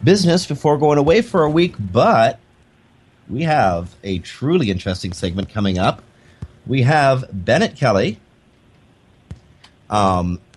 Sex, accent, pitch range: male, American, 100-135 Hz